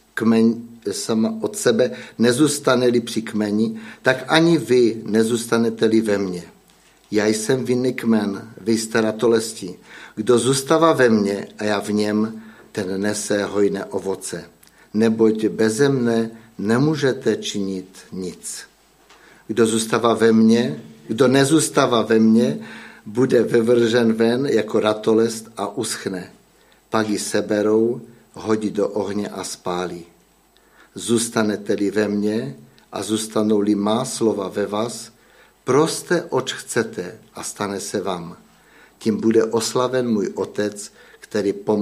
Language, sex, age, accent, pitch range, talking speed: Czech, male, 50-69, native, 105-115 Hz, 120 wpm